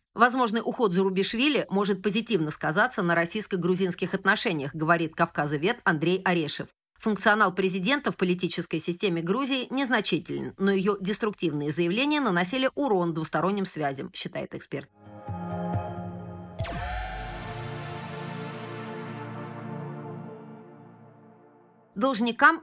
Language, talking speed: Russian, 85 wpm